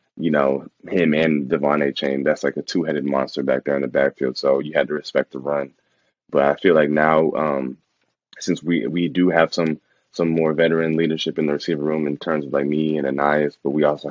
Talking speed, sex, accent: 235 wpm, male, American